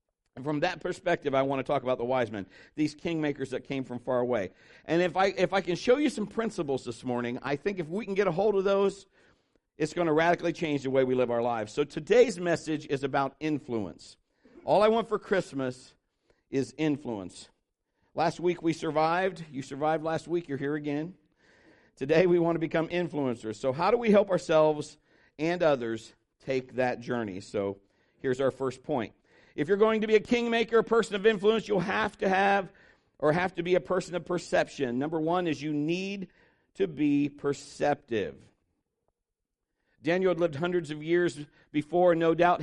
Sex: male